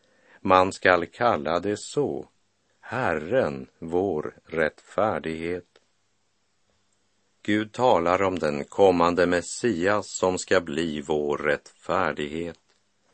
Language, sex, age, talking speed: Swedish, male, 50-69, 85 wpm